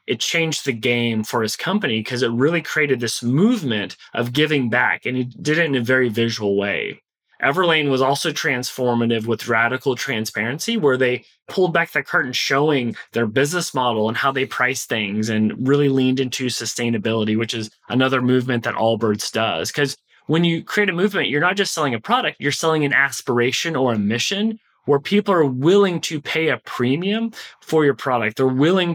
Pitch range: 120-160 Hz